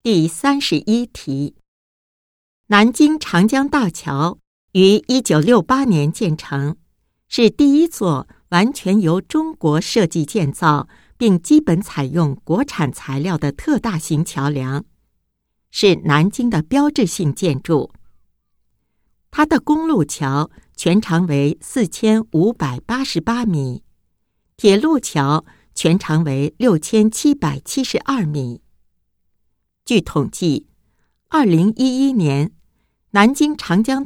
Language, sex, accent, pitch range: Japanese, female, American, 150-235 Hz